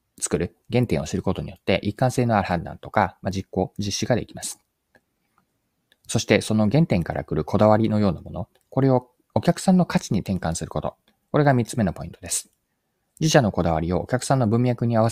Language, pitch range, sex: Japanese, 90-120 Hz, male